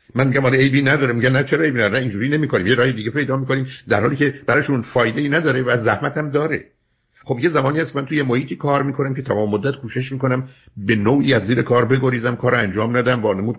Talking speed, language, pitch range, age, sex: 225 wpm, Persian, 105-135 Hz, 60-79, male